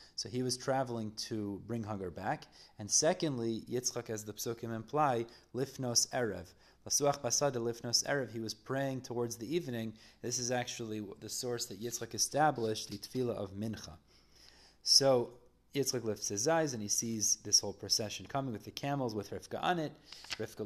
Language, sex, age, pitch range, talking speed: English, male, 30-49, 105-130 Hz, 170 wpm